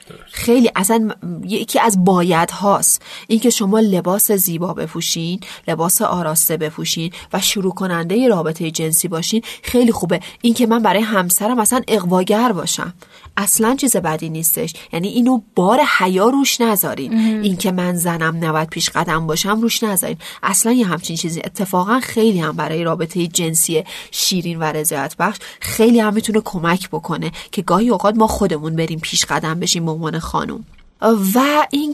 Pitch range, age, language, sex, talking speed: 170-210 Hz, 30-49, Persian, female, 155 wpm